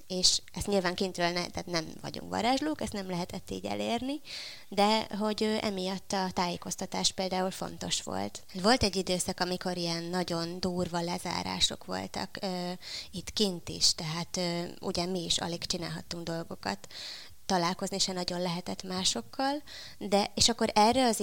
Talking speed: 140 wpm